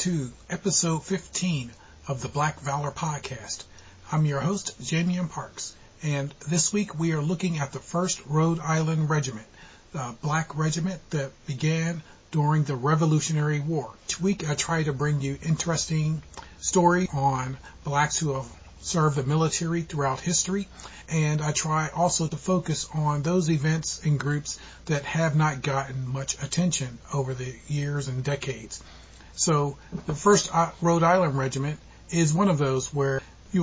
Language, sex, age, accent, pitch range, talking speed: English, male, 40-59, American, 135-165 Hz, 155 wpm